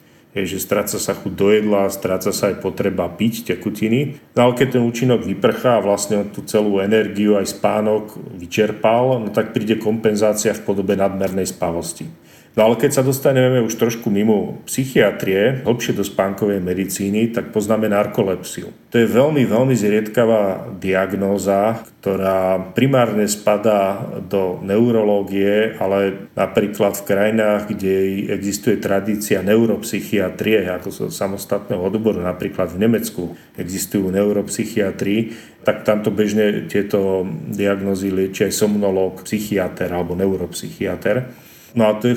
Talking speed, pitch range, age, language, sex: 130 wpm, 95-110 Hz, 40-59, Slovak, male